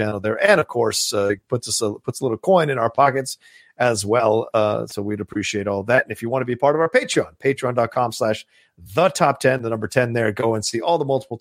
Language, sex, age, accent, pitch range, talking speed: English, male, 40-59, American, 115-160 Hz, 260 wpm